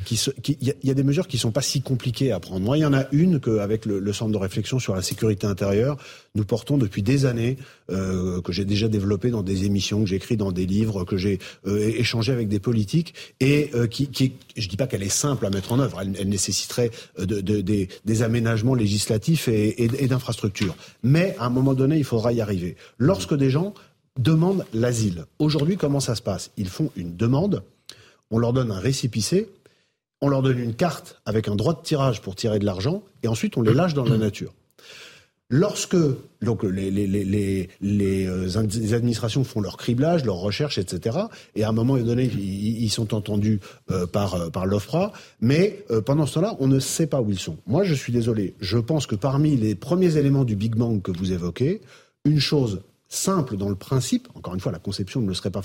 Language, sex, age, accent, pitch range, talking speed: French, male, 40-59, French, 105-140 Hz, 220 wpm